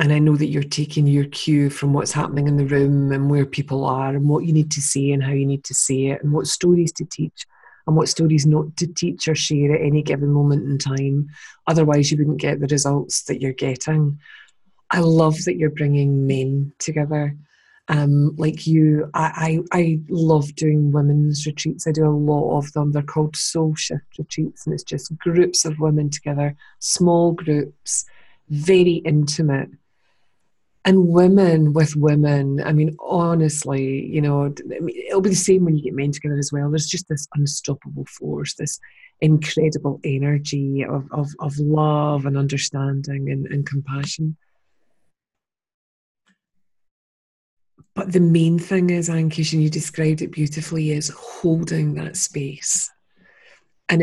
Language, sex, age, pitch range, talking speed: English, female, 30-49, 145-160 Hz, 170 wpm